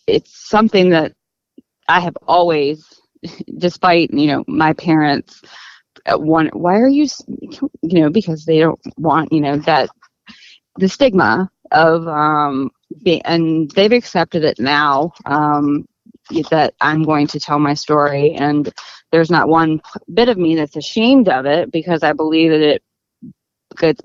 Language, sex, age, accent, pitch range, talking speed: English, female, 20-39, American, 150-180 Hz, 150 wpm